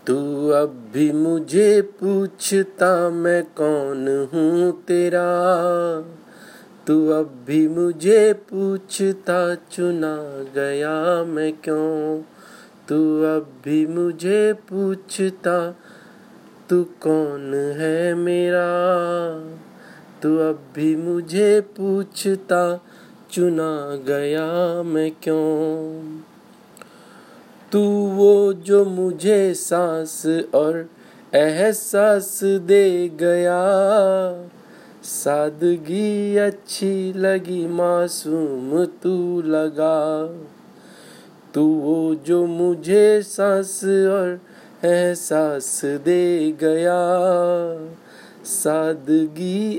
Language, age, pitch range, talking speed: Hindi, 30-49, 155-190 Hz, 75 wpm